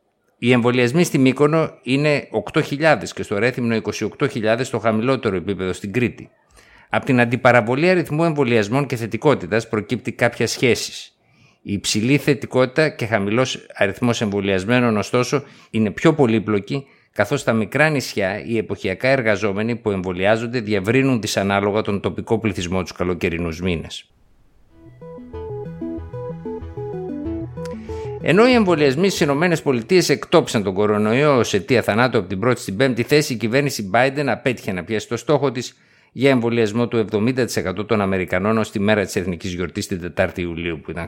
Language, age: Greek, 50-69